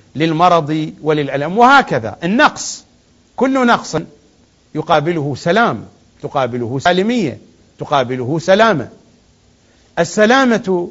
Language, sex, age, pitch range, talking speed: English, male, 50-69, 135-195 Hz, 70 wpm